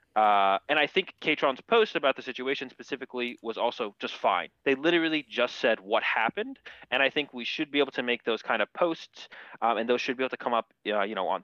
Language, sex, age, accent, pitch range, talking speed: English, male, 20-39, American, 125-155 Hz, 240 wpm